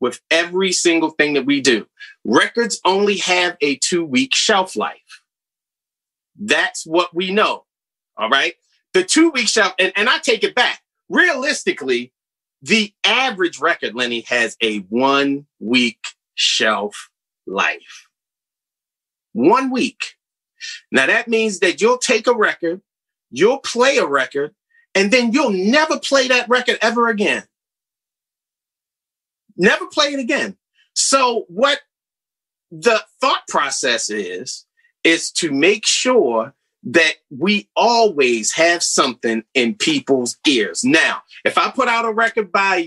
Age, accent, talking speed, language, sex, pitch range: 40-59, American, 130 wpm, English, male, 170-280 Hz